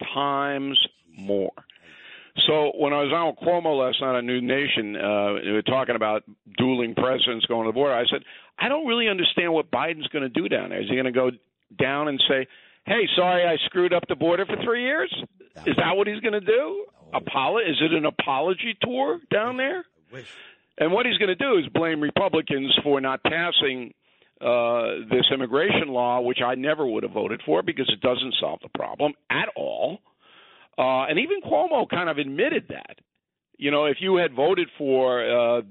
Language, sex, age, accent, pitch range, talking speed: English, male, 50-69, American, 125-190 Hz, 195 wpm